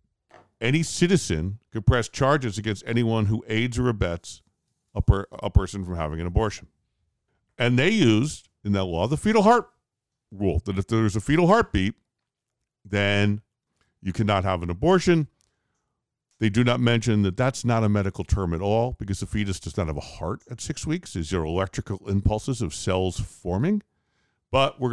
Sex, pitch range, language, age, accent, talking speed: male, 95-115 Hz, English, 50-69, American, 175 wpm